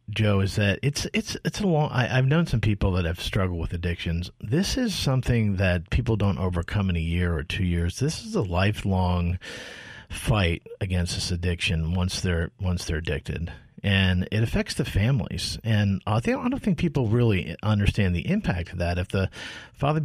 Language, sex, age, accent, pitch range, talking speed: English, male, 50-69, American, 90-110 Hz, 190 wpm